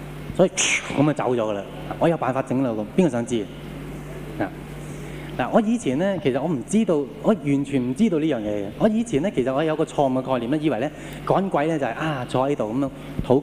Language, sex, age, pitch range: Japanese, male, 20-39, 130-170 Hz